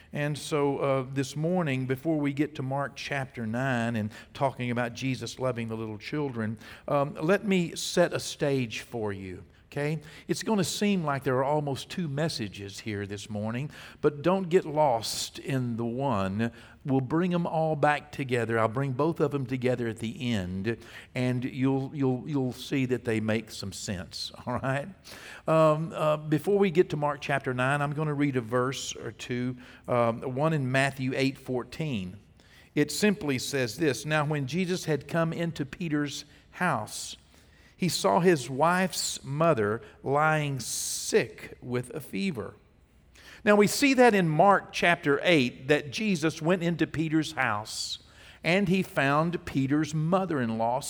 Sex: male